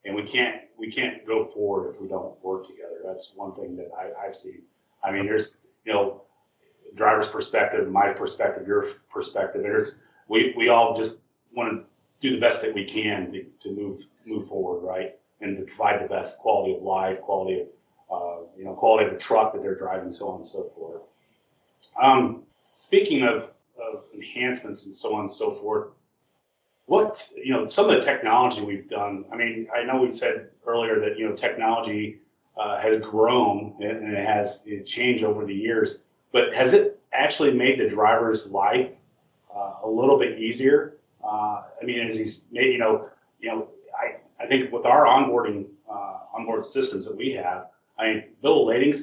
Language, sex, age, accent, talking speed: English, male, 30-49, American, 185 wpm